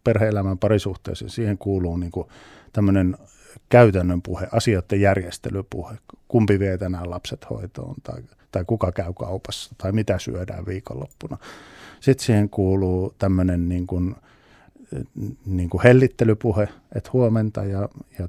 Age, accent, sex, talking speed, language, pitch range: 50-69, native, male, 110 wpm, Finnish, 95-110 Hz